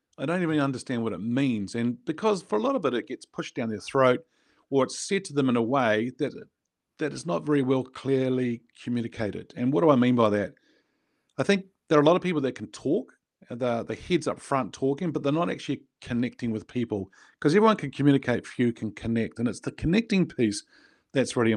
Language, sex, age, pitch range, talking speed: English, male, 40-59, 120-155 Hz, 225 wpm